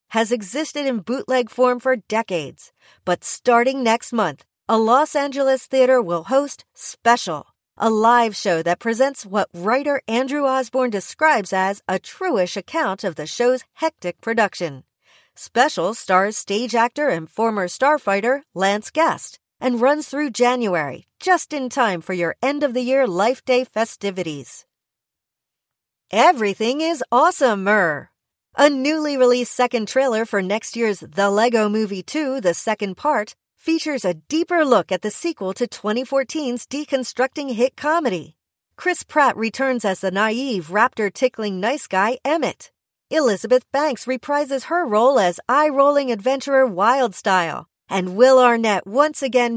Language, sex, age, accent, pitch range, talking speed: English, female, 40-59, American, 205-275 Hz, 135 wpm